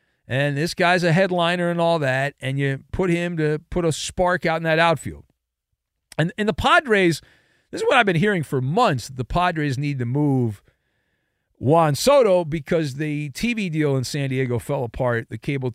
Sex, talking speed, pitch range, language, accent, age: male, 190 wpm, 125-175 Hz, English, American, 40-59